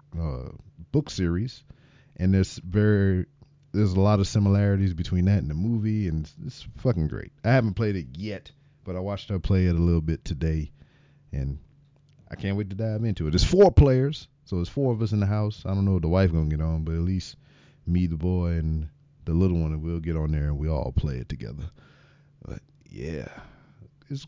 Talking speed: 215 wpm